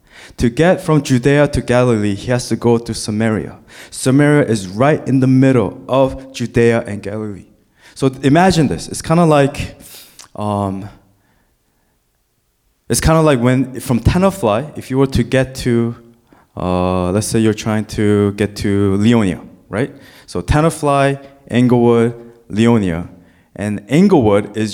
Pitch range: 105-140 Hz